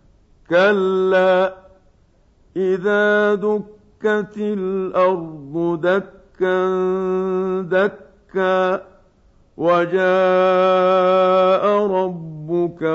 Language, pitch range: Arabic, 170-190 Hz